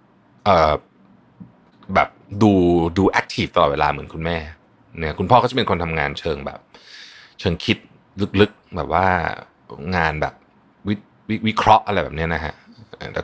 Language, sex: Thai, male